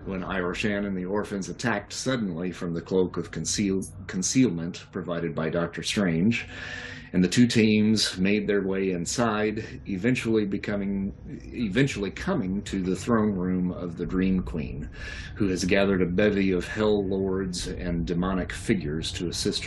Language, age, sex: English, 40-59, male